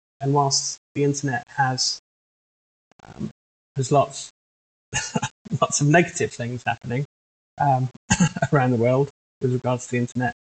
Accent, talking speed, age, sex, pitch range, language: British, 125 wpm, 20-39, male, 120-150 Hz, English